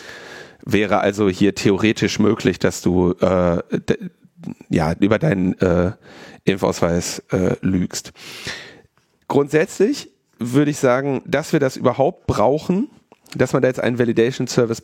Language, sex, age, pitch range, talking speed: German, male, 40-59, 115-150 Hz, 130 wpm